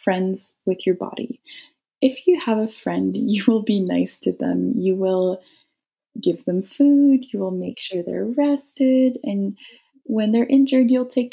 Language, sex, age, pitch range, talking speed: English, female, 20-39, 180-245 Hz, 170 wpm